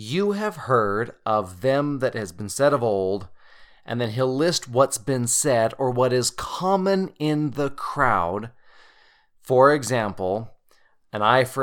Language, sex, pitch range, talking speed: English, male, 105-145 Hz, 155 wpm